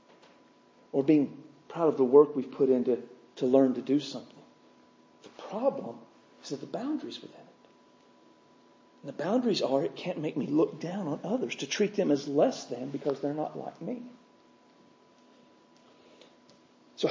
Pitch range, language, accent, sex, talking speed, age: 150-220 Hz, English, American, male, 160 wpm, 50-69